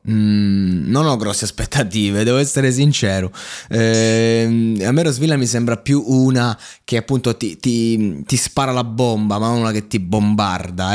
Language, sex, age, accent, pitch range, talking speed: Italian, male, 20-39, native, 110-135 Hz, 165 wpm